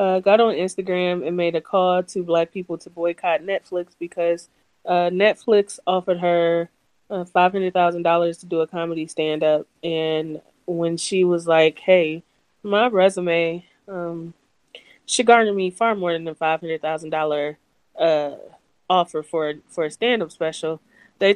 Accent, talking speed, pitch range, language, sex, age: American, 145 wpm, 165-195 Hz, English, female, 20-39